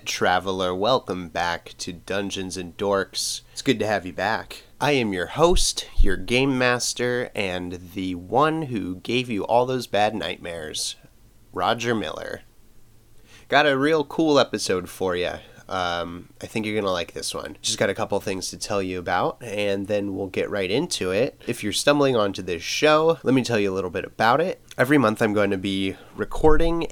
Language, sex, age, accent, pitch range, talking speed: English, male, 30-49, American, 95-125 Hz, 190 wpm